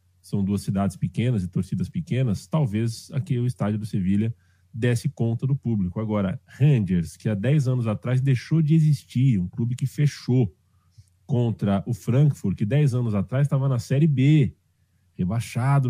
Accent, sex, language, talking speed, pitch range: Brazilian, male, Portuguese, 160 wpm, 95-130 Hz